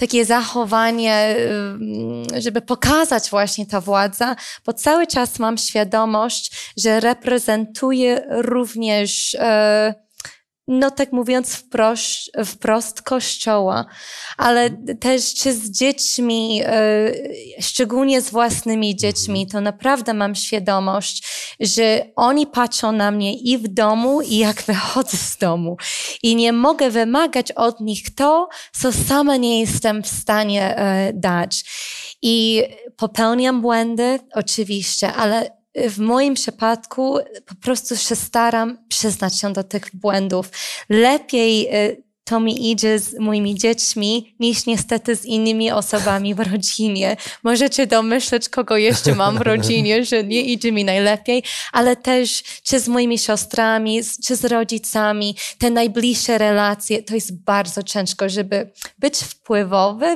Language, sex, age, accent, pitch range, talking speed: Polish, female, 20-39, native, 210-245 Hz, 125 wpm